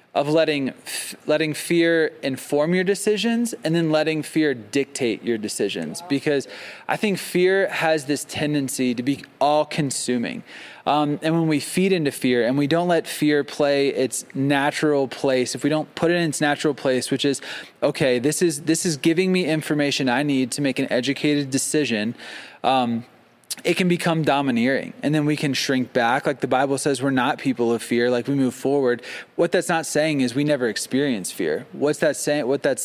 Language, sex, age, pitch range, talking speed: English, male, 20-39, 135-165 Hz, 190 wpm